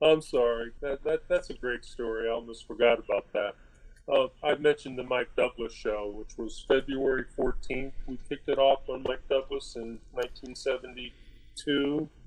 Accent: American